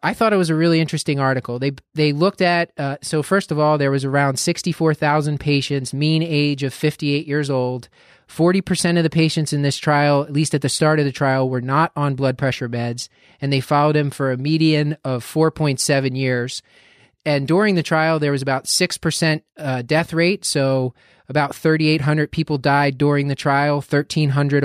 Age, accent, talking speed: 30-49, American, 190 wpm